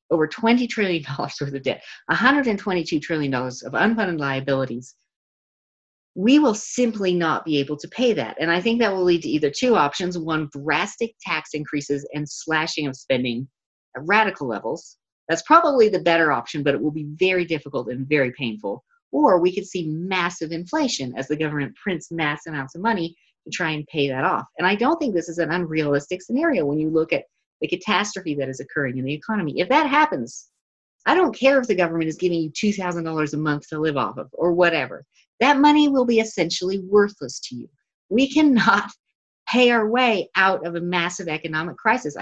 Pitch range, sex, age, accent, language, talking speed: 155-215 Hz, female, 40-59, American, English, 195 wpm